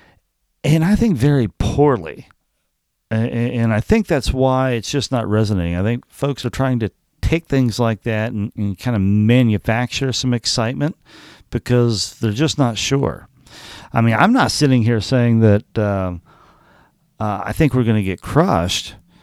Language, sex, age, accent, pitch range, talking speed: English, male, 50-69, American, 105-135 Hz, 160 wpm